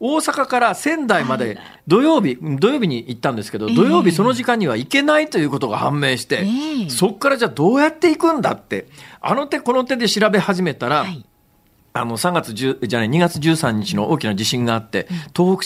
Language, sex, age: Japanese, male, 40-59